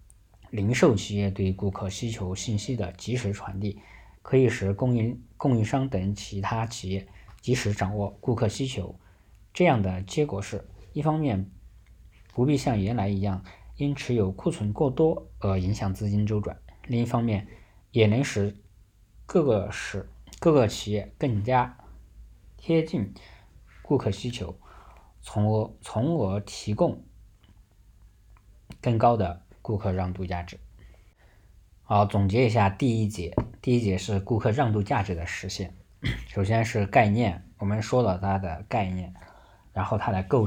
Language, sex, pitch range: Chinese, male, 95-110 Hz